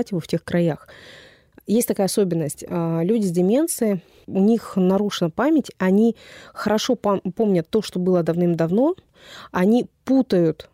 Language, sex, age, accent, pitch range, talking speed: Russian, female, 20-39, native, 165-205 Hz, 130 wpm